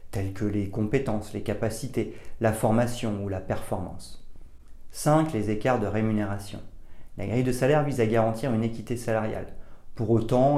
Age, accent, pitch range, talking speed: 40-59, French, 100-120 Hz, 160 wpm